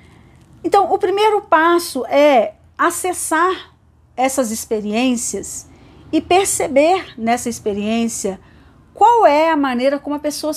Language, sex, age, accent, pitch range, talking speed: Portuguese, female, 40-59, Brazilian, 235-315 Hz, 110 wpm